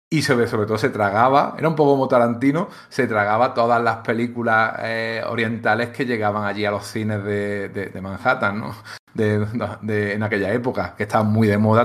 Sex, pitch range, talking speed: male, 105-125 Hz, 205 wpm